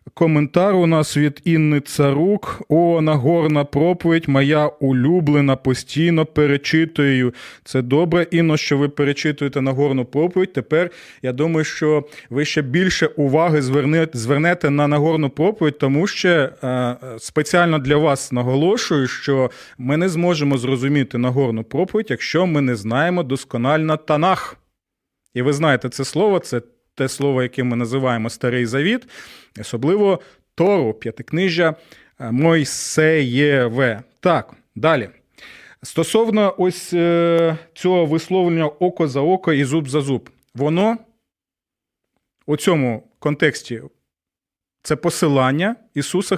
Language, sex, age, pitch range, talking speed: Ukrainian, male, 30-49, 135-170 Hz, 120 wpm